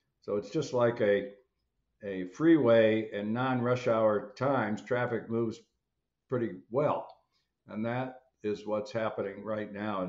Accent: American